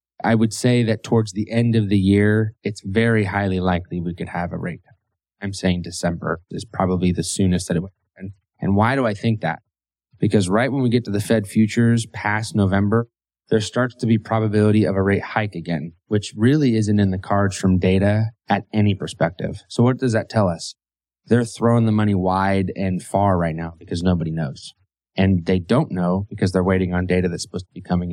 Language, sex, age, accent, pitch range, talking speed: English, male, 20-39, American, 90-110 Hz, 215 wpm